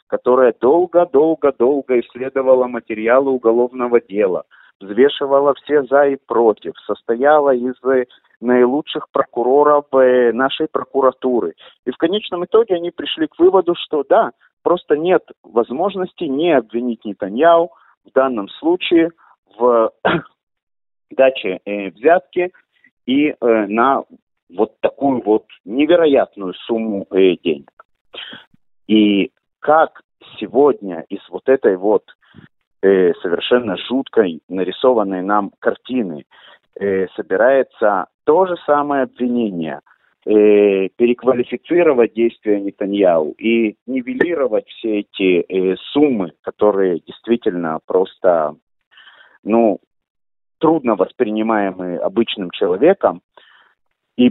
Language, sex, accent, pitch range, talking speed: Russian, male, native, 105-145 Hz, 100 wpm